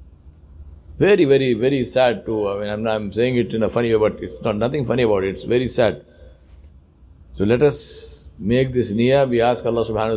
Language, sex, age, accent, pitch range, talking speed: English, male, 50-69, Indian, 110-145 Hz, 205 wpm